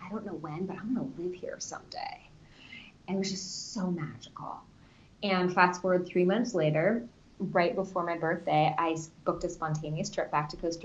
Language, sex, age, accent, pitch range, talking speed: English, female, 20-39, American, 170-200 Hz, 190 wpm